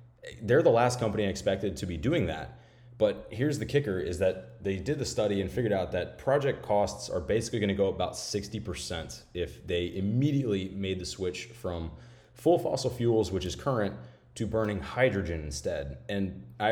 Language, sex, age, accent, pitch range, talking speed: English, male, 30-49, American, 90-115 Hz, 185 wpm